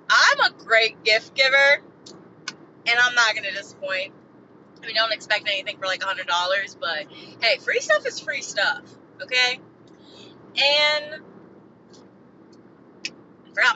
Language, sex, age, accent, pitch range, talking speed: English, female, 20-39, American, 205-295 Hz, 130 wpm